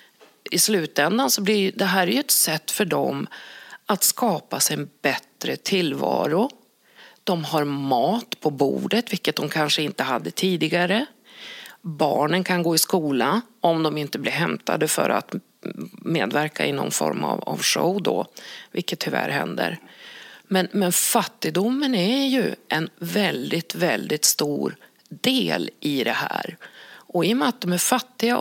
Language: English